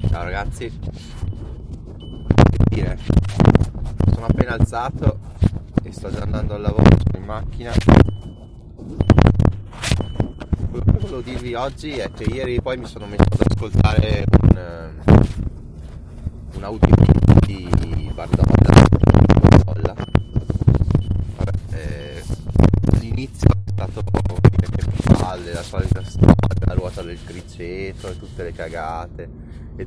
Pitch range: 85-105 Hz